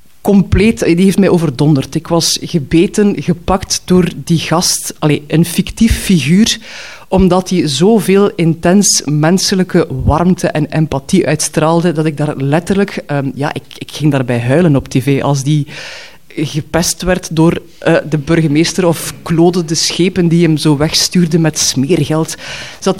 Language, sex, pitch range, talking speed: Dutch, female, 150-180 Hz, 145 wpm